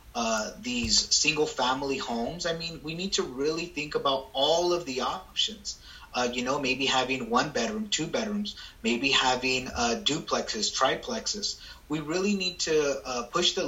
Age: 30-49